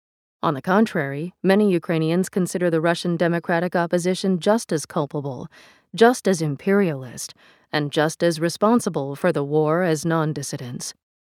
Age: 40-59